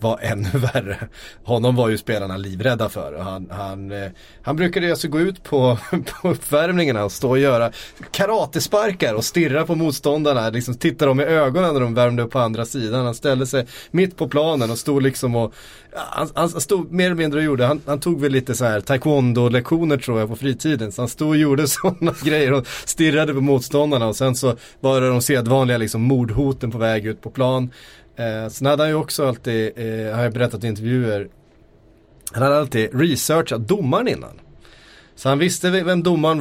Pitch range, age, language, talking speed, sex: 115-150 Hz, 30-49, Swedish, 190 wpm, male